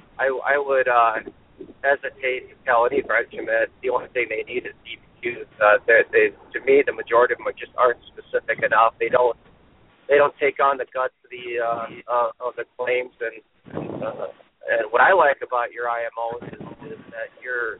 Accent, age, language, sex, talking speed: American, 40-59, English, male, 190 wpm